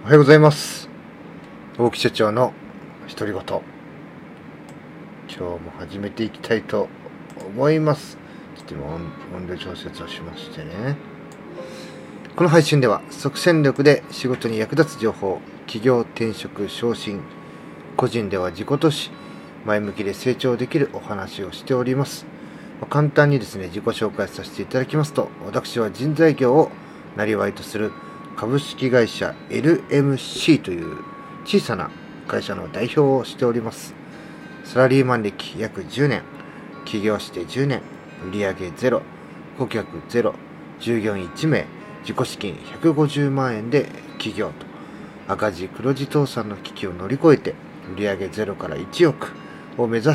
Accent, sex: native, male